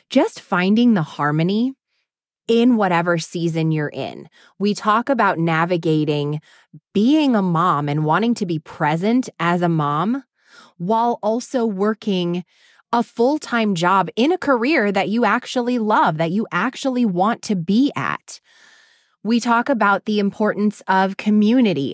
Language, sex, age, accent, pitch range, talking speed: English, female, 20-39, American, 180-235 Hz, 140 wpm